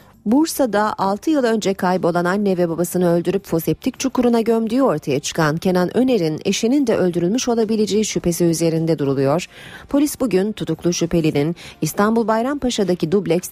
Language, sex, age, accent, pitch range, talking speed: Turkish, female, 40-59, native, 160-225 Hz, 135 wpm